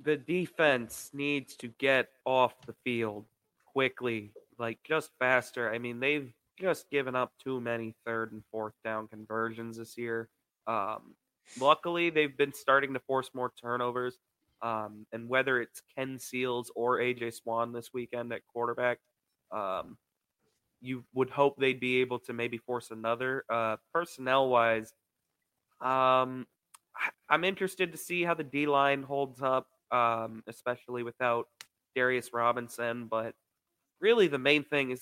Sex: male